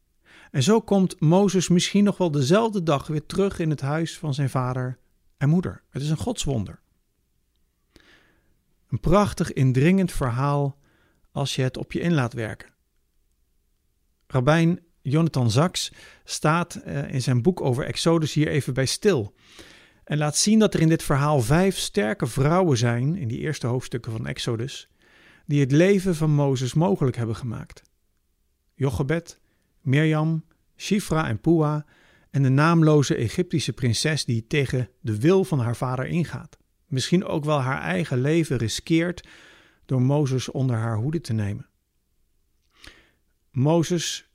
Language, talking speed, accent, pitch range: Dutch, 145 wpm, Dutch, 125-165 Hz